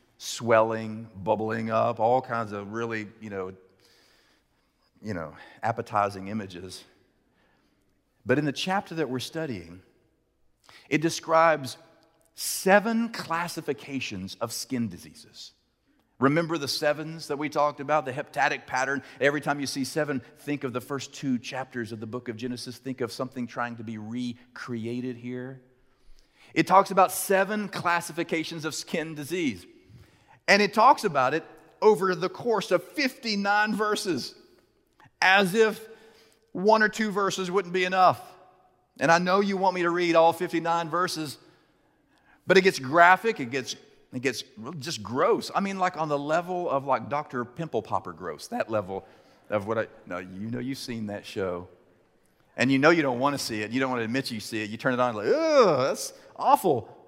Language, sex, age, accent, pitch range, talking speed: English, male, 40-59, American, 115-180 Hz, 165 wpm